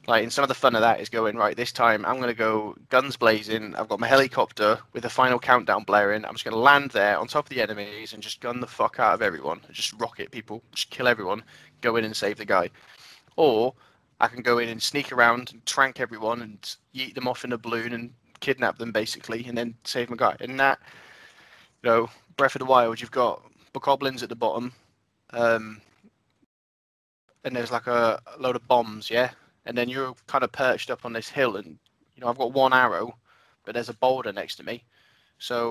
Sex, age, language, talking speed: male, 20-39, English, 225 wpm